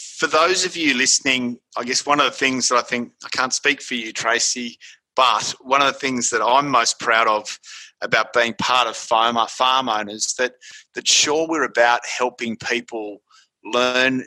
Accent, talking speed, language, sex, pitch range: Australian, 180 wpm, English, male, 110-125 Hz